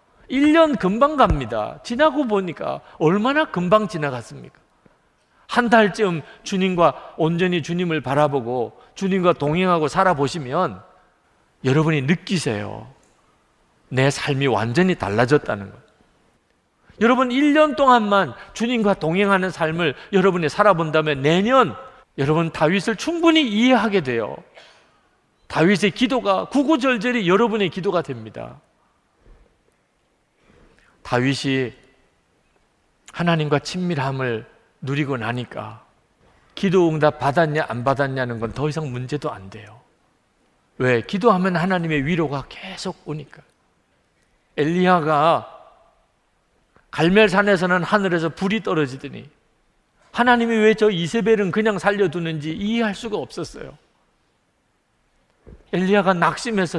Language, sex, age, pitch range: Korean, male, 40-59, 150-210 Hz